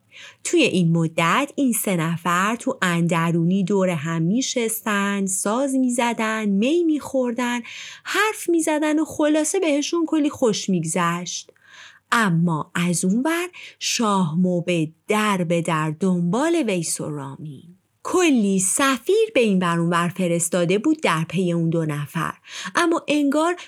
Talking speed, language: 135 wpm, Persian